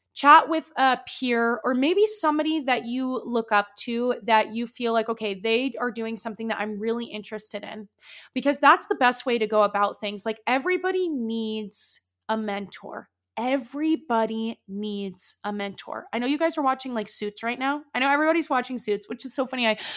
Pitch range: 215-265 Hz